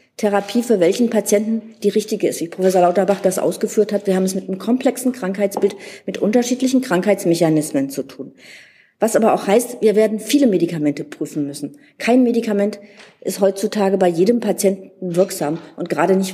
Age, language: 40-59, German